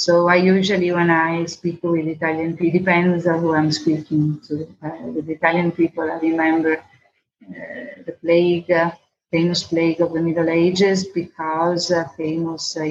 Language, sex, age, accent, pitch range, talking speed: English, female, 30-49, Italian, 160-180 Hz, 165 wpm